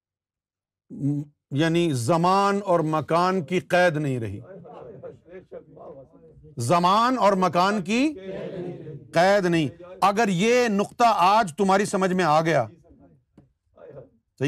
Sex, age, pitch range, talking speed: male, 50-69, 155-215 Hz, 100 wpm